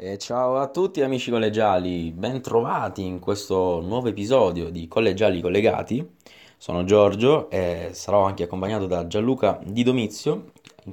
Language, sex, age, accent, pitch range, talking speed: Italian, male, 20-39, native, 90-115 Hz, 145 wpm